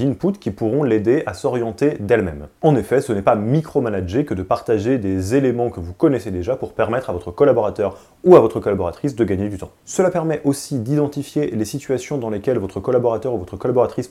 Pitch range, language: 105-145 Hz, French